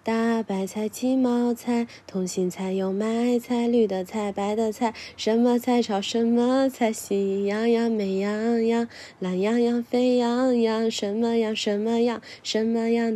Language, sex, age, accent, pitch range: Chinese, female, 20-39, native, 180-230 Hz